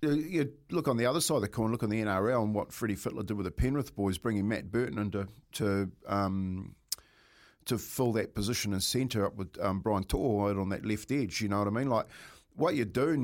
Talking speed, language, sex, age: 235 wpm, English, male, 50-69